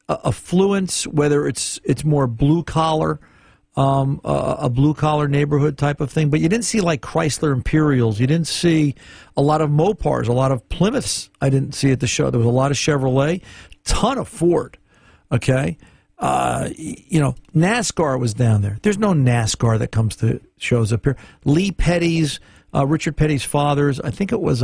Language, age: English, 50-69